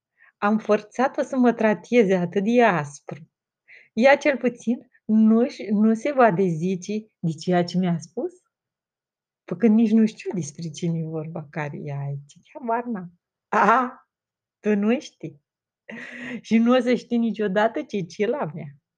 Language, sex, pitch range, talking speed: Romanian, female, 175-245 Hz, 160 wpm